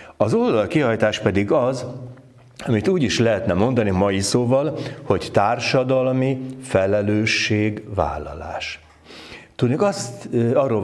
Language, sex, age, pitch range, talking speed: Hungarian, male, 60-79, 105-135 Hz, 100 wpm